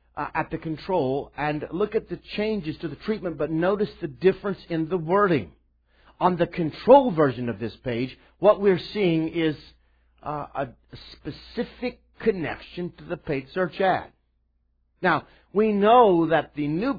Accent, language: American, English